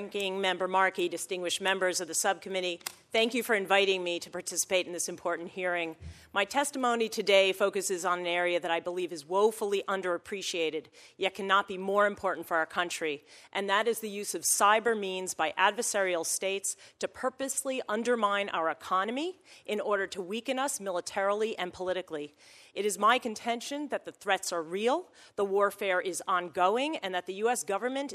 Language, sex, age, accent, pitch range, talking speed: English, female, 40-59, American, 180-230 Hz, 175 wpm